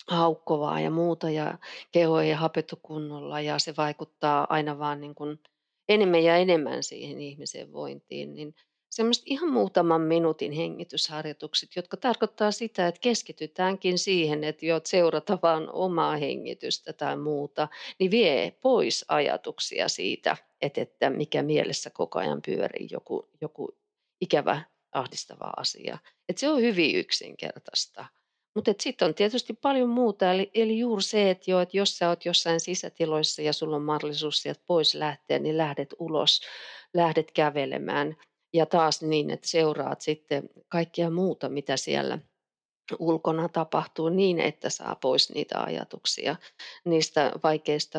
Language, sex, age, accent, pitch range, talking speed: Finnish, female, 40-59, native, 155-195 Hz, 135 wpm